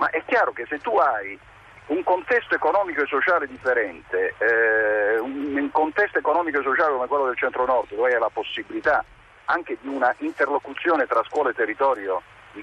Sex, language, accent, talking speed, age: male, Italian, native, 180 wpm, 50-69